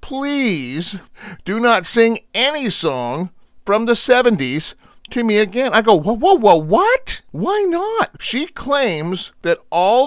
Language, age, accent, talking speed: English, 40-59, American, 145 wpm